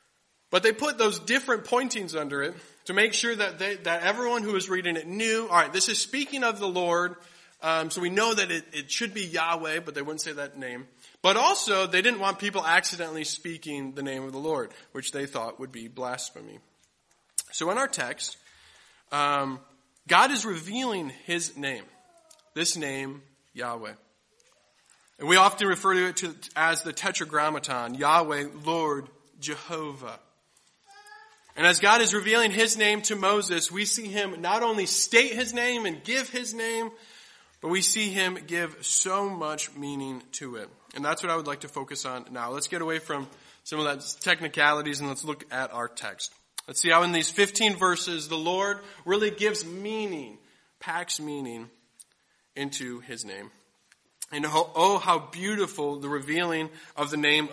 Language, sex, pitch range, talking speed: English, male, 145-205 Hz, 175 wpm